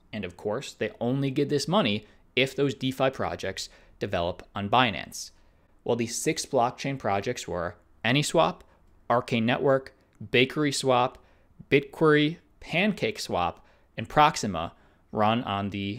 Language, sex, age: English, male, 20-39